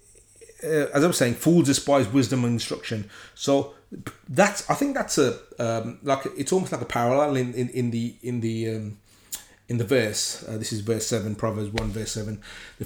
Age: 30-49